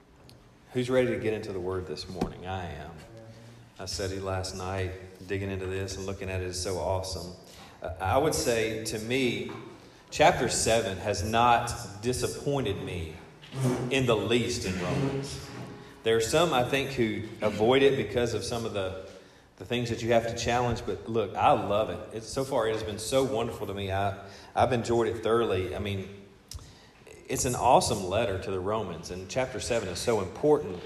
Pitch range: 95-125 Hz